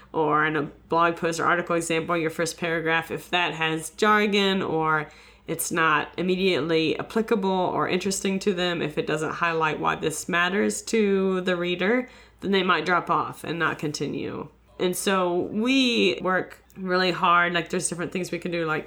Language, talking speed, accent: English, 180 wpm, American